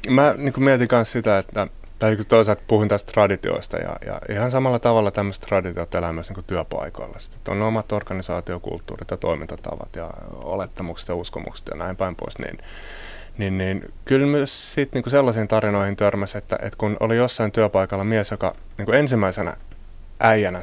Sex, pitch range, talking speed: male, 90-115 Hz, 170 wpm